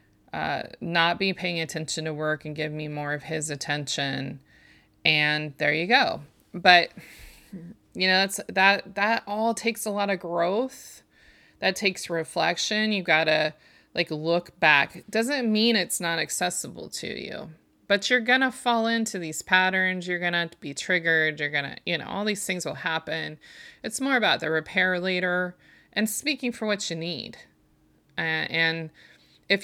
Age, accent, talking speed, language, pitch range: 30-49, American, 170 wpm, English, 165-215 Hz